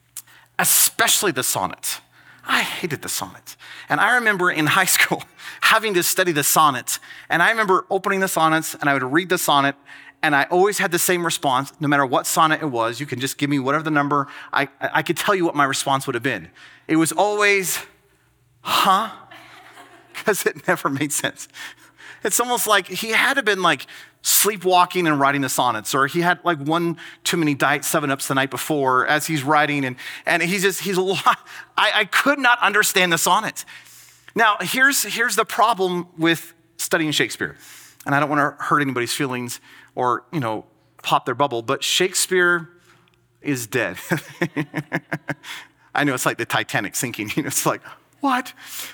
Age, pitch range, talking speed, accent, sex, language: 30-49, 145-190 Hz, 185 wpm, American, male, English